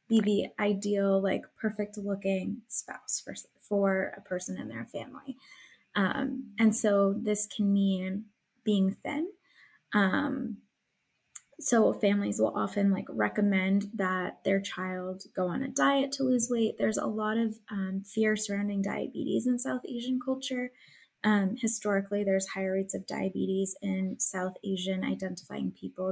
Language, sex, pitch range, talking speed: English, female, 195-230 Hz, 145 wpm